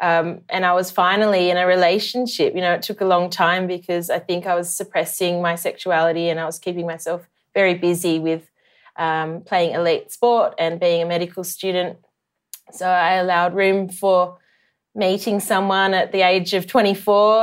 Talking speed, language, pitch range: 180 wpm, English, 175-210 Hz